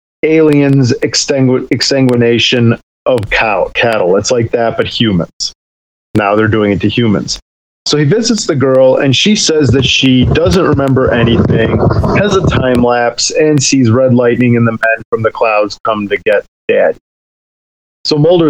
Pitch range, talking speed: 110-140 Hz, 160 wpm